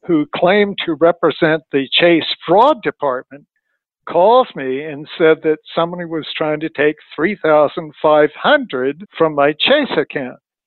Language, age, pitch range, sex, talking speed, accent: English, 60-79, 135-160 Hz, male, 130 wpm, American